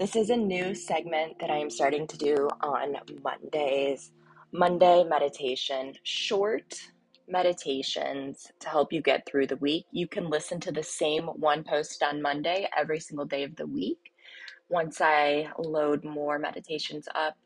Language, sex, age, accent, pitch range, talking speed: English, female, 20-39, American, 140-175 Hz, 160 wpm